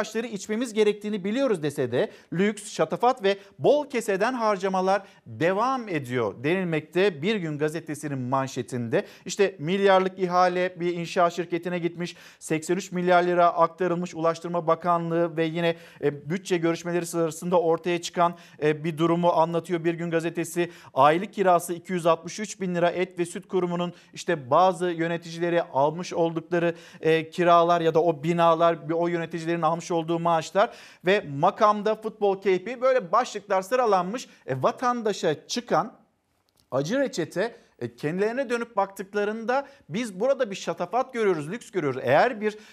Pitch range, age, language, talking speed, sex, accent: 165-200 Hz, 50-69, Turkish, 130 wpm, male, native